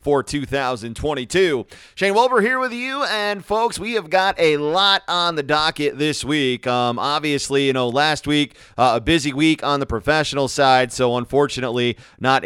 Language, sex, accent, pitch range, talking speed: English, male, American, 130-155 Hz, 175 wpm